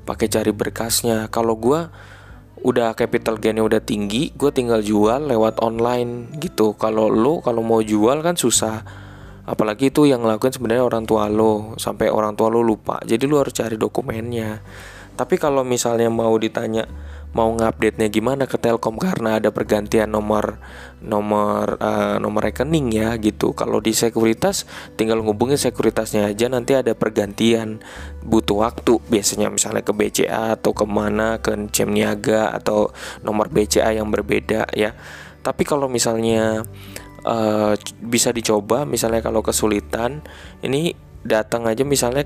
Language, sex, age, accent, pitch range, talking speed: Indonesian, male, 20-39, native, 105-120 Hz, 145 wpm